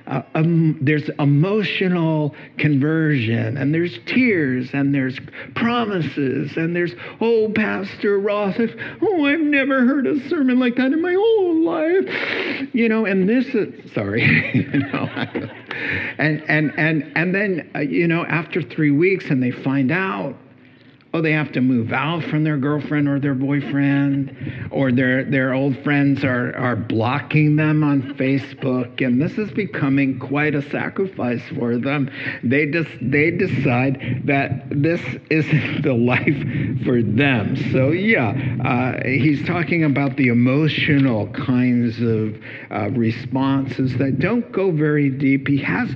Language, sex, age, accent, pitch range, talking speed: English, male, 50-69, American, 130-165 Hz, 150 wpm